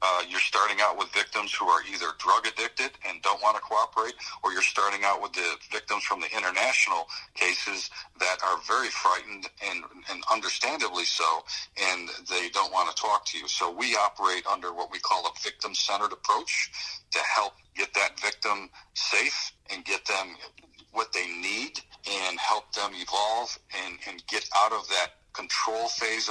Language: English